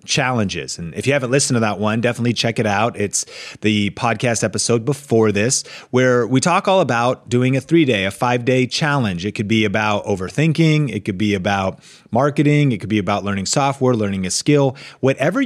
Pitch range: 110-135 Hz